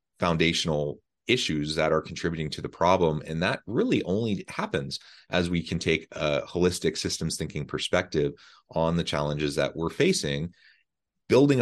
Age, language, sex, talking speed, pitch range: 30-49, English, male, 150 wpm, 75-95 Hz